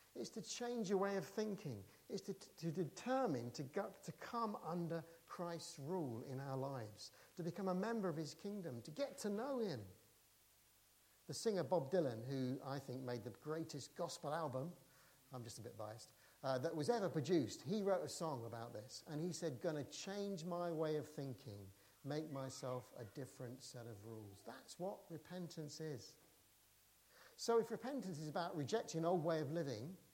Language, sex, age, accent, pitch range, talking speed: English, male, 50-69, British, 125-180 Hz, 185 wpm